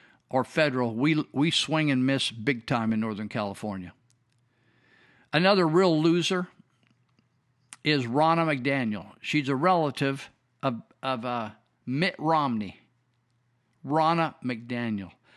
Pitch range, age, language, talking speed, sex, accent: 125-165 Hz, 50-69, English, 110 wpm, male, American